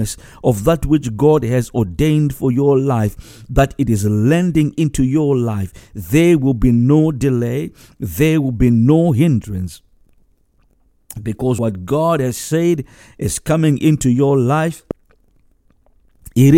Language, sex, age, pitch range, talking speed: English, male, 50-69, 115-160 Hz, 135 wpm